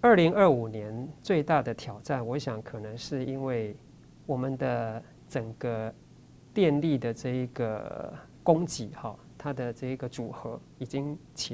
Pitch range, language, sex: 120-150 Hz, Chinese, male